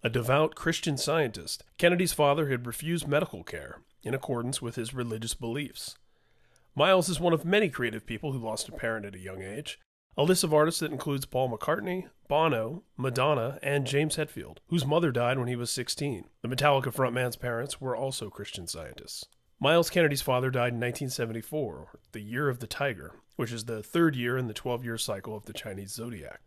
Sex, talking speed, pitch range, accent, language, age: male, 190 wpm, 115-150 Hz, American, English, 30-49